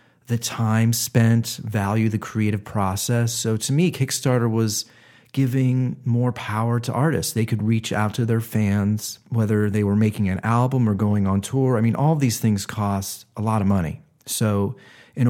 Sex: male